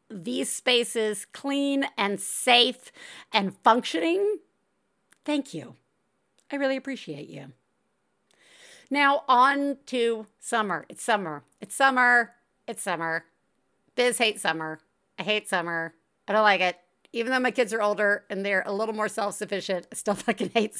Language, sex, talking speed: English, female, 140 wpm